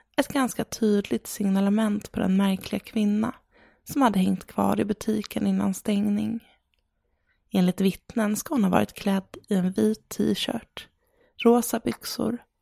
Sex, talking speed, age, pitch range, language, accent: female, 145 wpm, 20-39, 200-230 Hz, English, Swedish